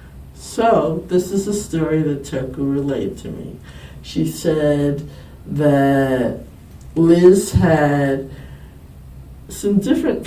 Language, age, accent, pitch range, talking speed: English, 60-79, American, 135-190 Hz, 100 wpm